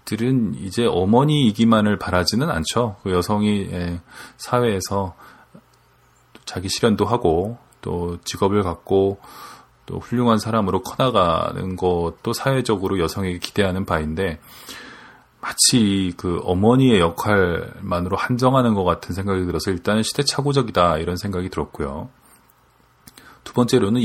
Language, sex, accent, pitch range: Korean, male, native, 90-120 Hz